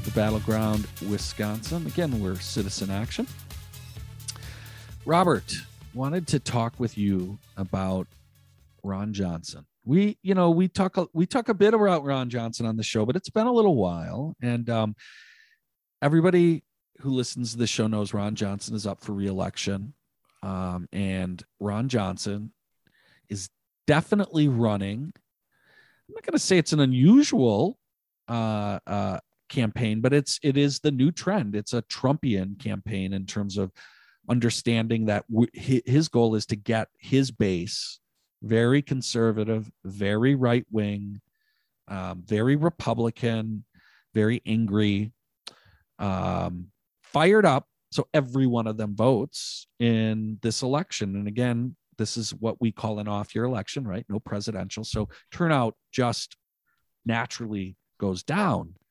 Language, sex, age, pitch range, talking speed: English, male, 40-59, 105-135 Hz, 135 wpm